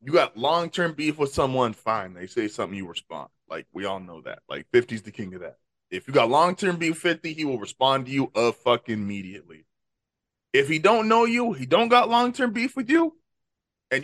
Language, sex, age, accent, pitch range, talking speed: English, male, 20-39, American, 140-205 Hz, 215 wpm